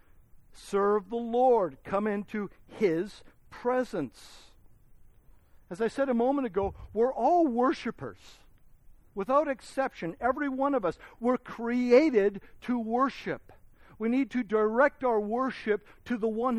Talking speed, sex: 125 wpm, male